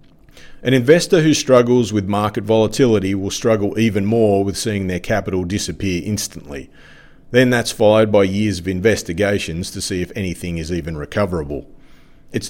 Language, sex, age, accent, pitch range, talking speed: English, male, 40-59, Australian, 95-120 Hz, 155 wpm